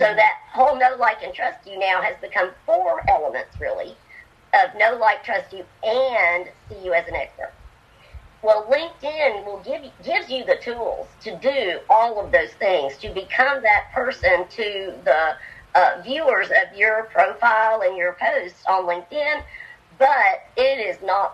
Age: 40-59